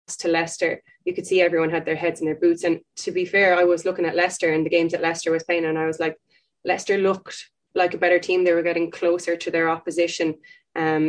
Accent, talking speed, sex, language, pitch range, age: Irish, 250 wpm, female, English, 160-175 Hz, 20-39